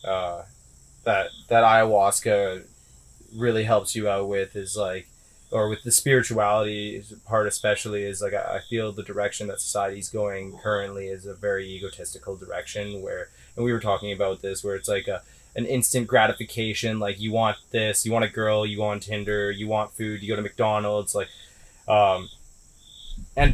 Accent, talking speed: American, 175 wpm